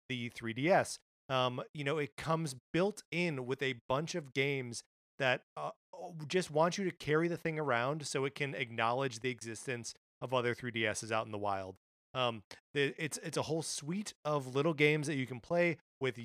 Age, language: 30-49, English